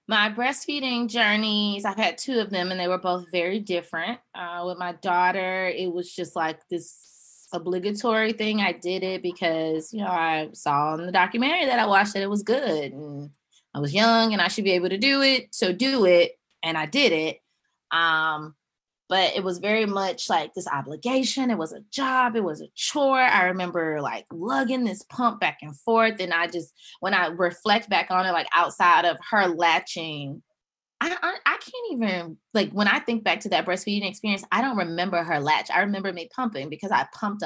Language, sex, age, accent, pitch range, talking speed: English, female, 20-39, American, 160-210 Hz, 205 wpm